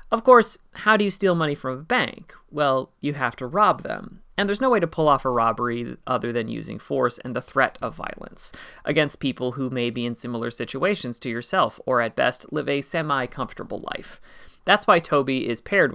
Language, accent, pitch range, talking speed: English, American, 120-160 Hz, 210 wpm